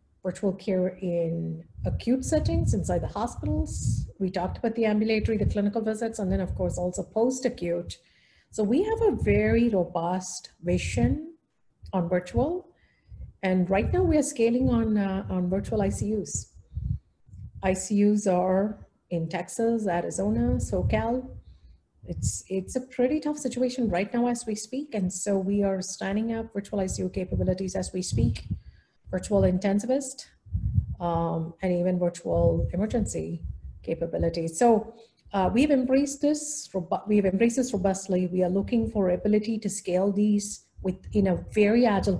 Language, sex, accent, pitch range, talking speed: English, female, Indian, 175-215 Hz, 140 wpm